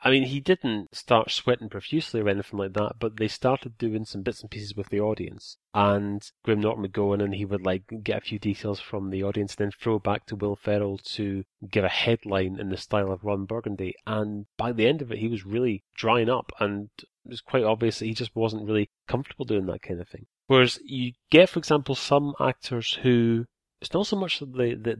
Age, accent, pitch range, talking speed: 30-49, British, 105-125 Hz, 235 wpm